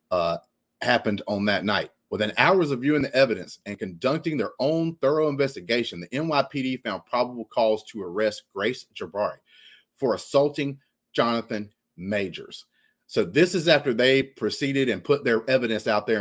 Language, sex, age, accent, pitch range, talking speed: English, male, 30-49, American, 105-135 Hz, 150 wpm